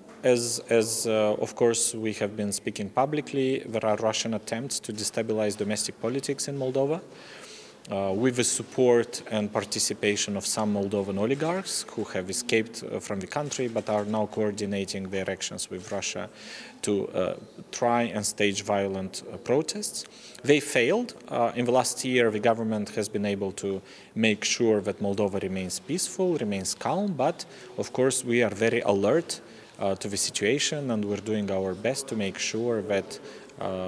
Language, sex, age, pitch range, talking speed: English, male, 30-49, 100-125 Hz, 165 wpm